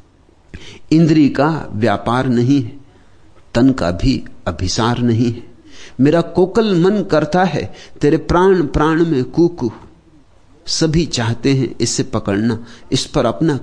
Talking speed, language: 130 wpm, Hindi